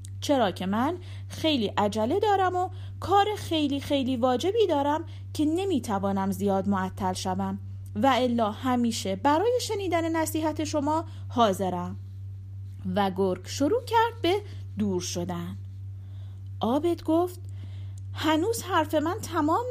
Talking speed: 115 wpm